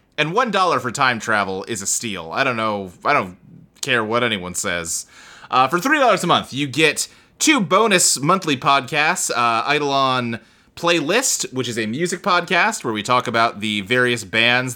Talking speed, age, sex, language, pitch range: 175 wpm, 30-49, male, English, 110-160 Hz